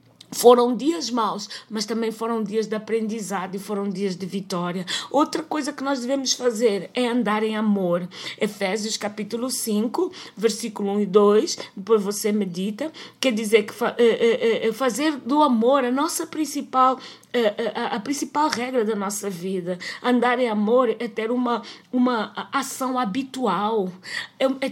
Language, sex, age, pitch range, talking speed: Portuguese, female, 20-39, 215-255 Hz, 155 wpm